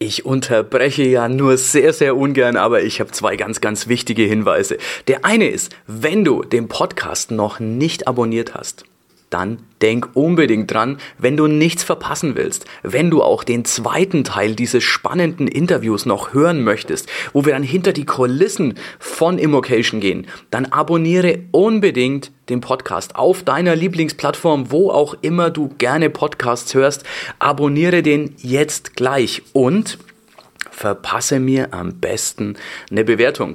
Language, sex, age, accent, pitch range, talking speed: German, male, 30-49, German, 130-175 Hz, 145 wpm